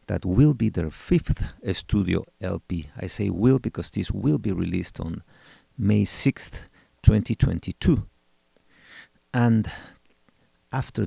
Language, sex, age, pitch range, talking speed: English, male, 50-69, 90-110 Hz, 115 wpm